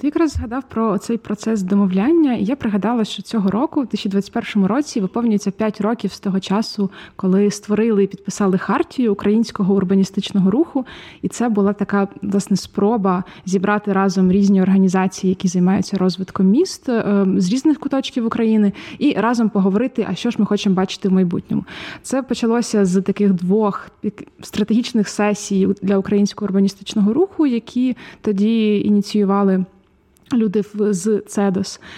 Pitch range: 195-230 Hz